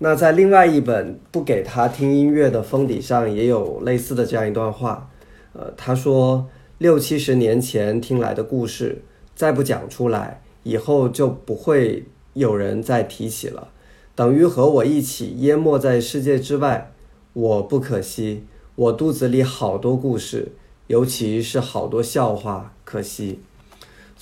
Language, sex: Chinese, male